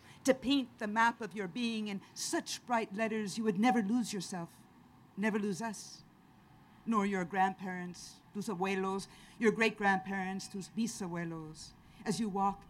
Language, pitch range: English, 170-215 Hz